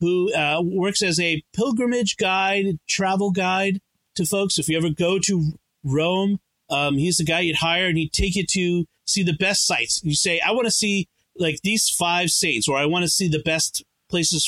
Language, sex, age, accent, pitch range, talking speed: English, male, 40-59, American, 145-185 Hz, 205 wpm